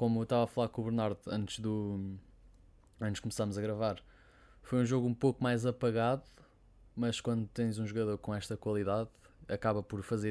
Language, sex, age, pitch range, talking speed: Portuguese, male, 20-39, 100-115 Hz, 185 wpm